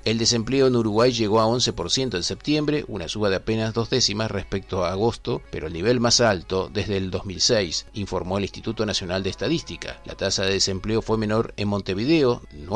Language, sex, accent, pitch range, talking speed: Spanish, male, Argentinian, 95-120 Hz, 190 wpm